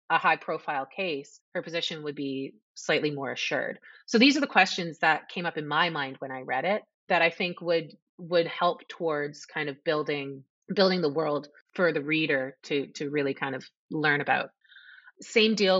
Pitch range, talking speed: 145-185 Hz, 195 wpm